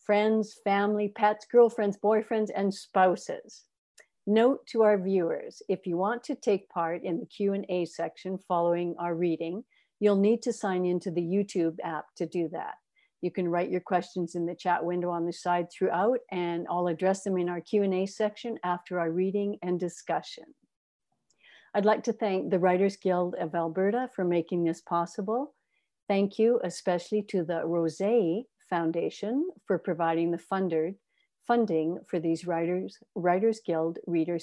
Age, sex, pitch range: 60-79, female, 170-210 Hz